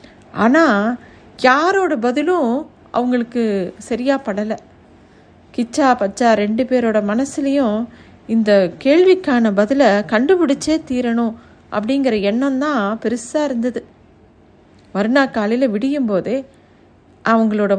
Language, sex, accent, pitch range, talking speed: Tamil, female, native, 225-295 Hz, 90 wpm